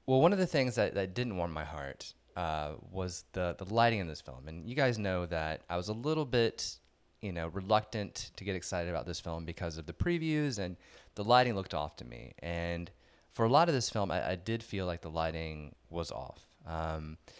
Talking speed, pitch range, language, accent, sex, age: 230 wpm, 85-110 Hz, English, American, male, 20-39